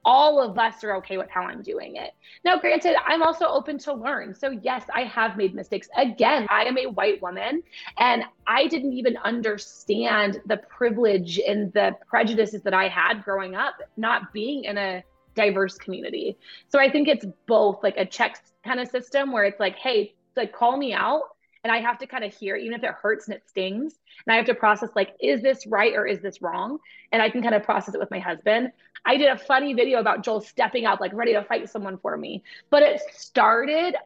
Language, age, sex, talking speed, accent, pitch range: English, 20-39, female, 220 wpm, American, 205-255 Hz